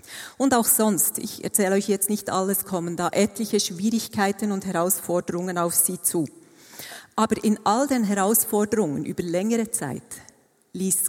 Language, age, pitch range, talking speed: German, 40-59, 160-200 Hz, 145 wpm